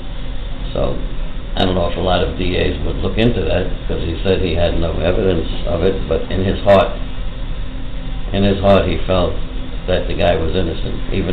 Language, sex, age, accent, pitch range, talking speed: English, male, 60-79, American, 85-105 Hz, 195 wpm